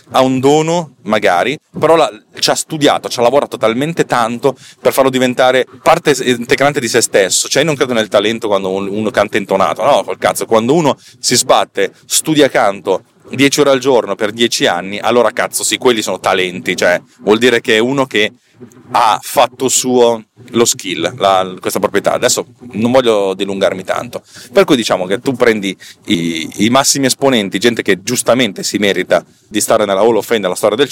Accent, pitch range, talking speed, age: native, 100-130 Hz, 190 wpm, 30-49